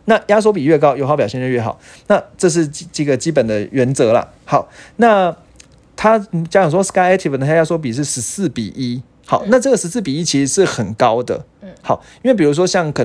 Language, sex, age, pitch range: Chinese, male, 30-49, 135-190 Hz